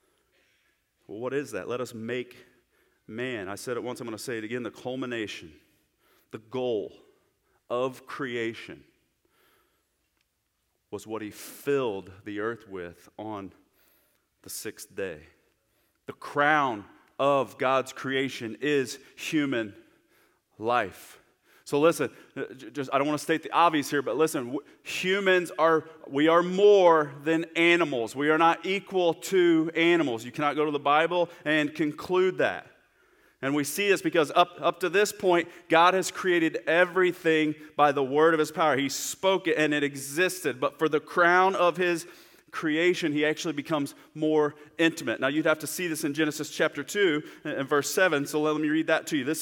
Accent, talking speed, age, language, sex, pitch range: American, 165 wpm, 30-49, English, male, 130-170 Hz